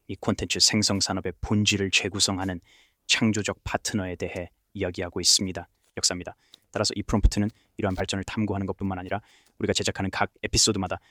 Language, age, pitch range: Korean, 20-39, 95-105 Hz